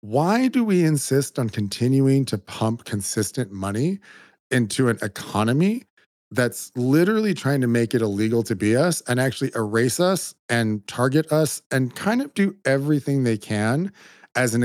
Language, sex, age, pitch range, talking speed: English, male, 40-59, 115-145 Hz, 160 wpm